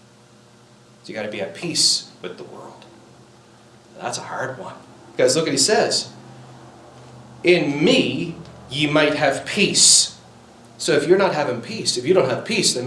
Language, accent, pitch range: English, American, 125-185 Hz